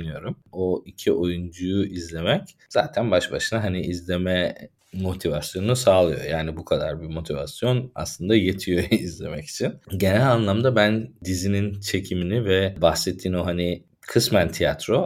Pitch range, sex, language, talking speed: 85-95 Hz, male, Turkish, 125 wpm